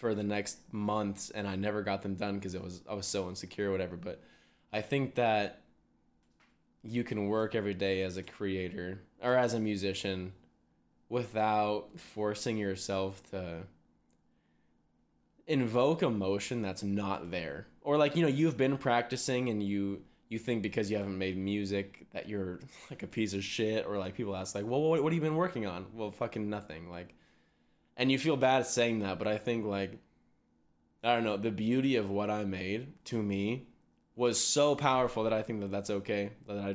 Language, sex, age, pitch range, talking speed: English, male, 10-29, 95-115 Hz, 190 wpm